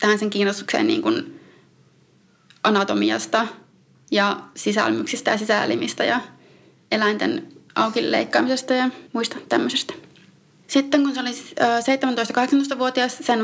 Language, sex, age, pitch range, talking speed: Finnish, female, 30-49, 215-265 Hz, 100 wpm